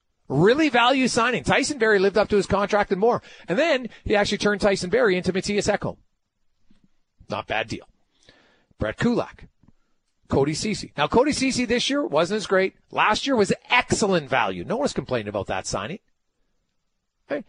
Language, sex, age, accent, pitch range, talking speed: English, male, 40-59, American, 200-260 Hz, 170 wpm